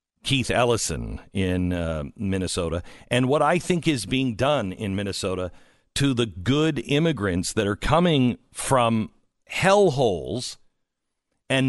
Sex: male